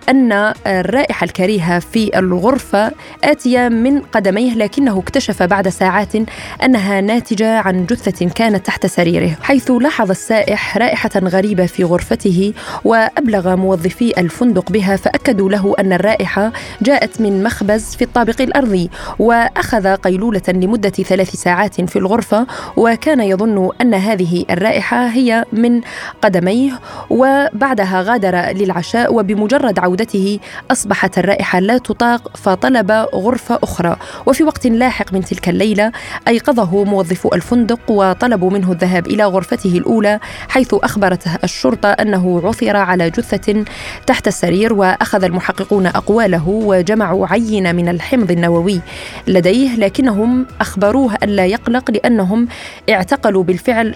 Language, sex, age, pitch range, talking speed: Arabic, female, 20-39, 190-235 Hz, 120 wpm